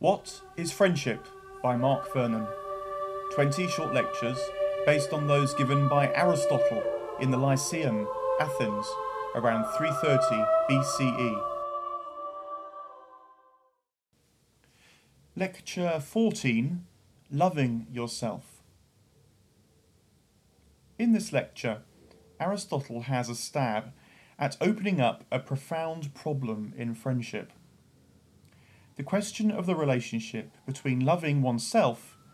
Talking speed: 90 wpm